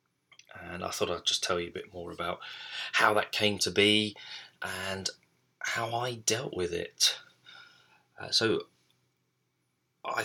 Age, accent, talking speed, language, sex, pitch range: 20-39, British, 145 wpm, English, male, 90-120 Hz